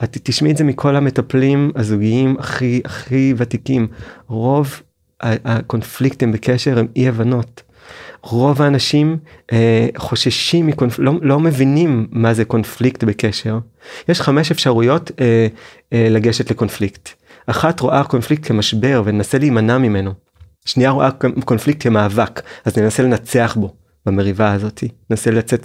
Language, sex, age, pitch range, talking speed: Hebrew, male, 30-49, 110-140 Hz, 125 wpm